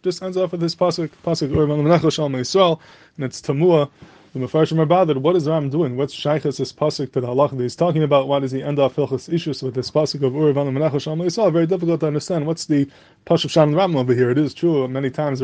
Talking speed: 220 wpm